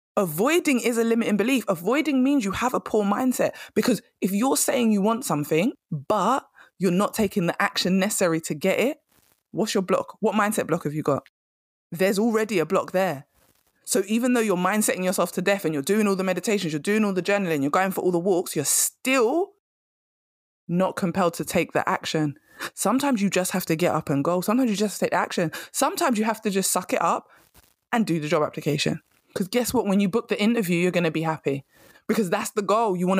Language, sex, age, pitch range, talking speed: English, female, 20-39, 175-225 Hz, 220 wpm